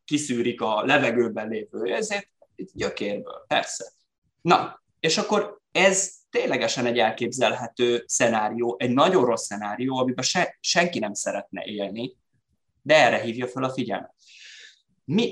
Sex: male